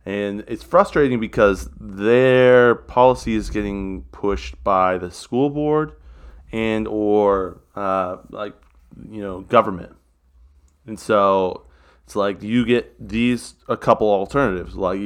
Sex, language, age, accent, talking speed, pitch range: male, English, 30-49, American, 125 wpm, 90-115 Hz